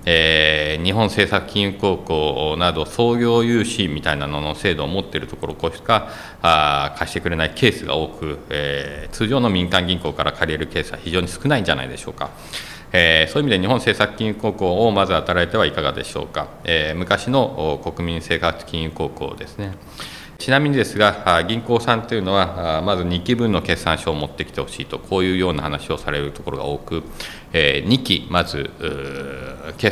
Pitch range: 75-105 Hz